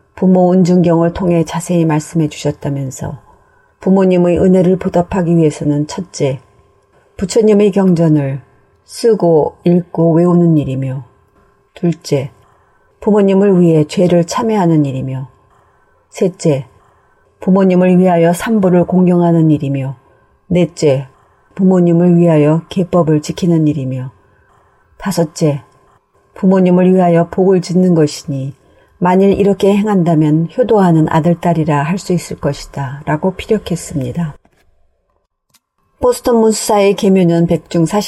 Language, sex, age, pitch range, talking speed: English, female, 40-59, 150-185 Hz, 85 wpm